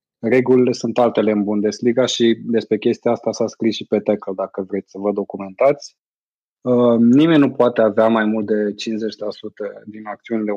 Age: 20-39